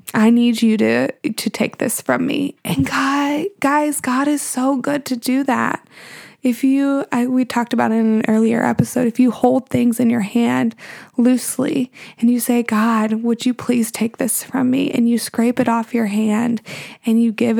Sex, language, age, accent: female, English, 20-39, American